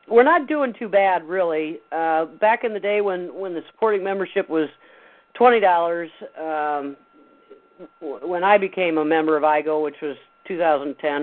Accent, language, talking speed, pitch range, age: American, English, 150 wpm, 170-235 Hz, 50-69